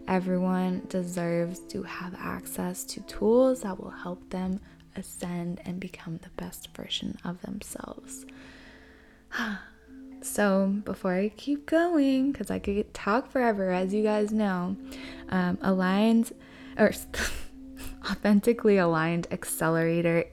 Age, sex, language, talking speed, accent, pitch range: 10-29, female, English, 115 wpm, American, 180-225 Hz